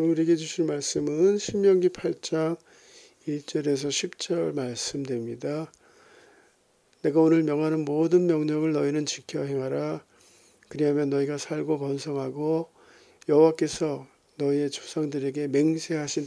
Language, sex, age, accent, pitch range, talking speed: Portuguese, male, 50-69, Korean, 140-170 Hz, 90 wpm